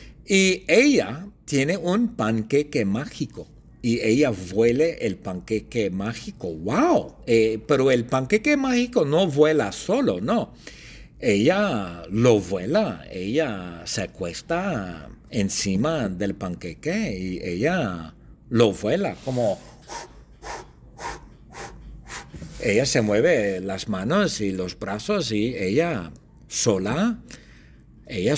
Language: English